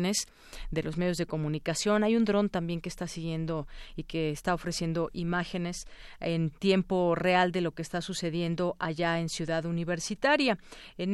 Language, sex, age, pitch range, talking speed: Spanish, female, 40-59, 165-195 Hz, 160 wpm